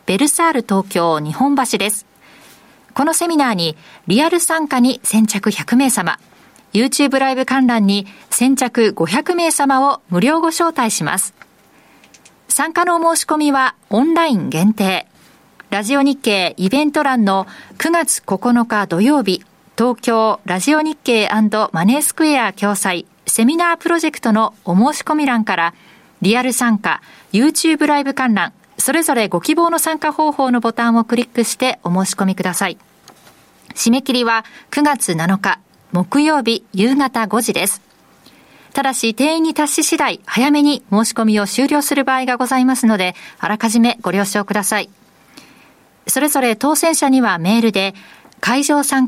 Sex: female